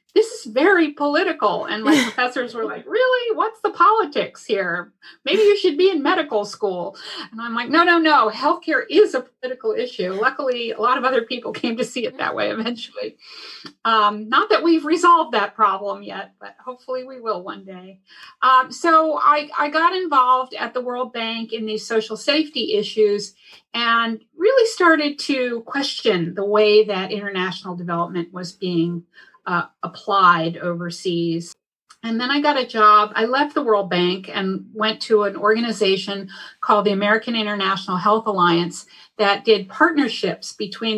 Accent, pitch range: American, 195-260 Hz